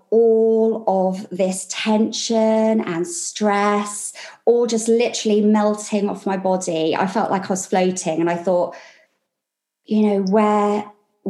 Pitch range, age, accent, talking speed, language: 185-225 Hz, 20-39, British, 135 wpm, English